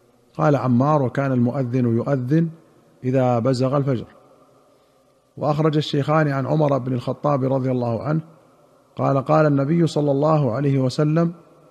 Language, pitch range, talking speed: Arabic, 130-150 Hz, 125 wpm